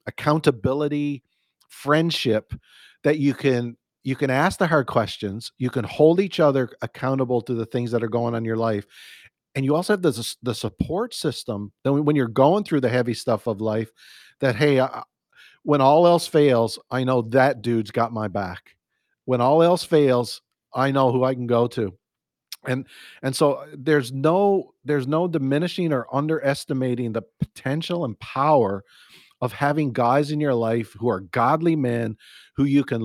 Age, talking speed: 50-69, 175 wpm